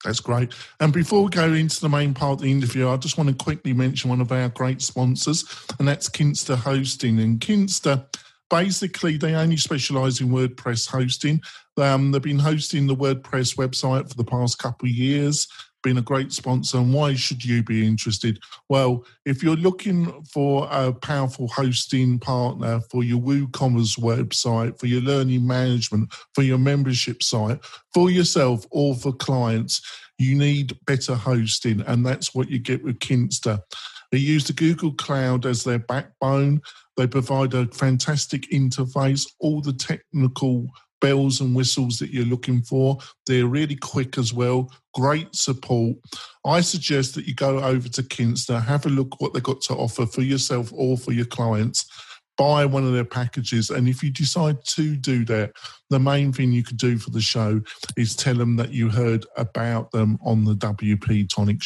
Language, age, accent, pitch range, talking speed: English, 50-69, British, 125-145 Hz, 175 wpm